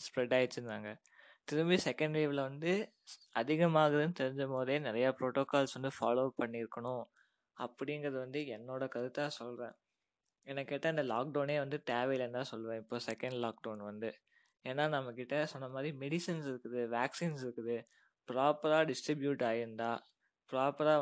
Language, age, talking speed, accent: Tamil, 20-39, 115 wpm, native